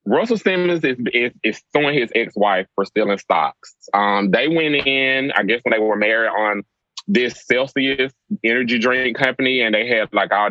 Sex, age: male, 20-39